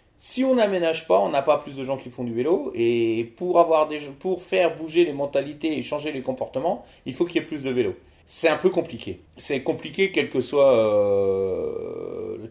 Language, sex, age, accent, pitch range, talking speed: French, male, 40-59, French, 120-180 Hz, 220 wpm